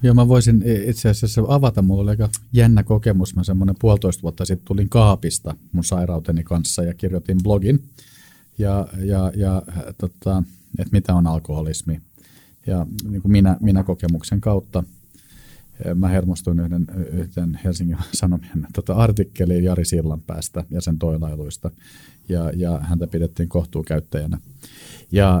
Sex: male